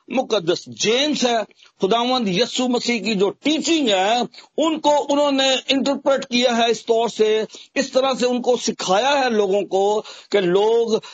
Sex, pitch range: male, 190-250 Hz